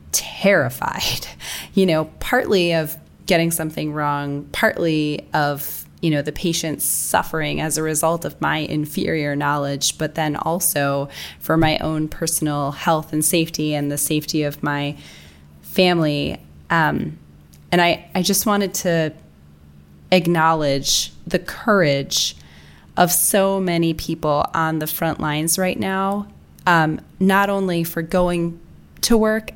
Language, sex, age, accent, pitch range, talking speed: English, female, 20-39, American, 145-175 Hz, 130 wpm